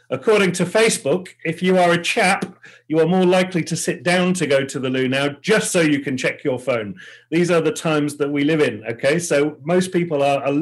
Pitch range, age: 120-160 Hz, 40-59